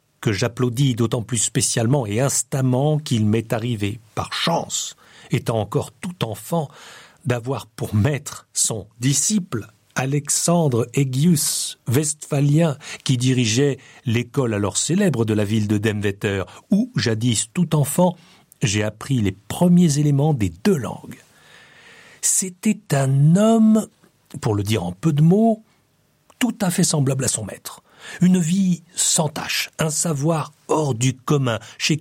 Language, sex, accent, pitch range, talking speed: French, male, French, 125-170 Hz, 135 wpm